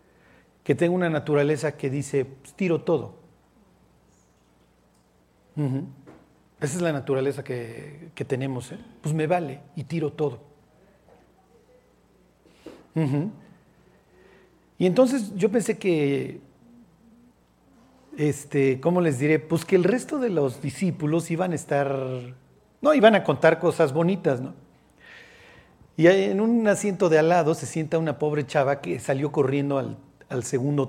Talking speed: 135 wpm